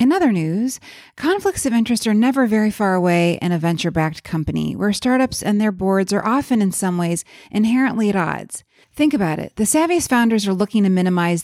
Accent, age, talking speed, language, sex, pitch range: American, 30-49, 200 wpm, English, female, 185-255 Hz